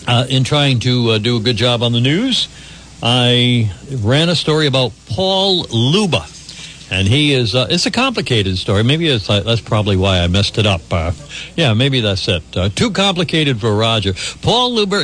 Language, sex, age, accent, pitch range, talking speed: English, male, 60-79, American, 110-155 Hz, 190 wpm